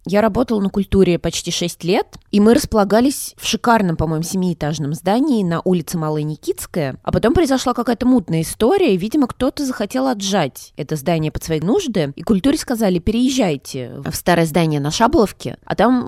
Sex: female